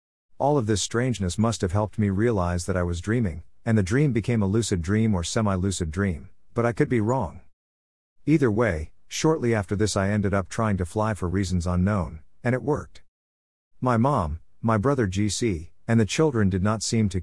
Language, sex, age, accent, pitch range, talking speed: English, male, 50-69, American, 90-115 Hz, 200 wpm